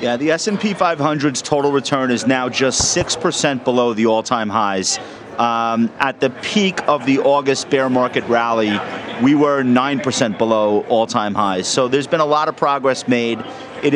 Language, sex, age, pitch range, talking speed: English, male, 40-59, 120-145 Hz, 185 wpm